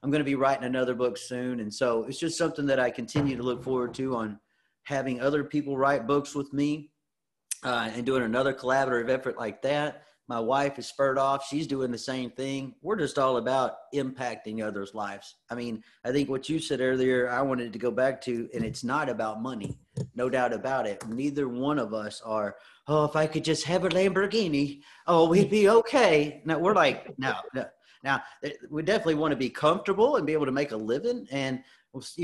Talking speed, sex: 210 wpm, male